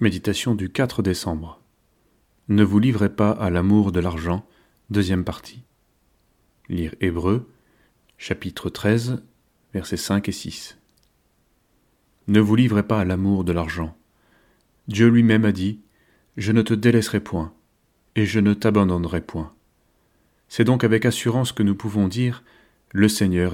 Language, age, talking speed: French, 30-49, 140 wpm